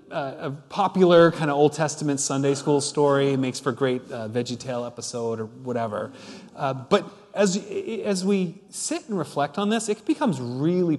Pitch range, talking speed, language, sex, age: 135-175 Hz, 185 wpm, English, male, 30-49